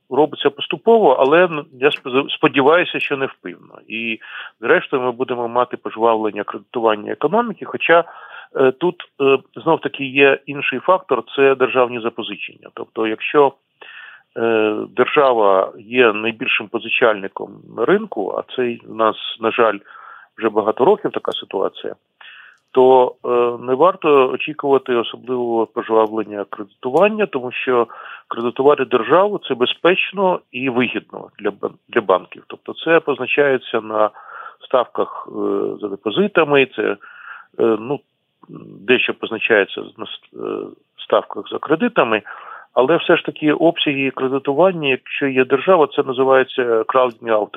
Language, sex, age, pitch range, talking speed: Ukrainian, male, 40-59, 115-150 Hz, 115 wpm